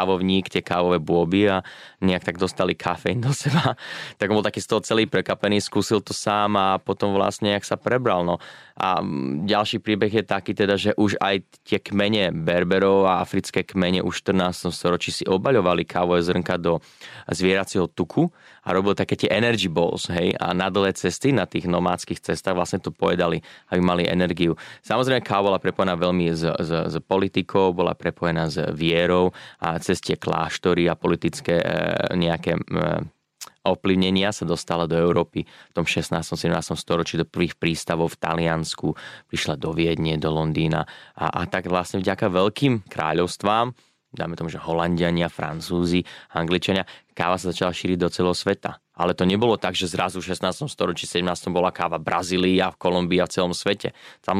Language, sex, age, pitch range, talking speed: Slovak, male, 20-39, 85-100 Hz, 175 wpm